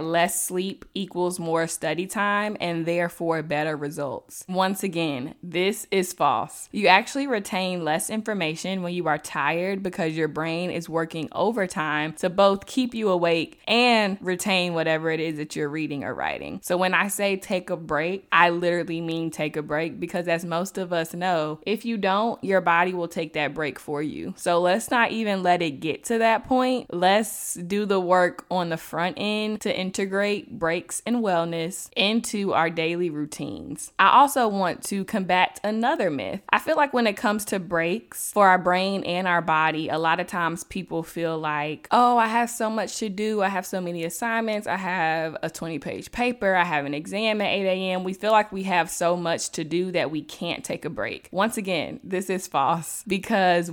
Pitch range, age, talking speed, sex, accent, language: 165-200 Hz, 20-39, 195 wpm, female, American, English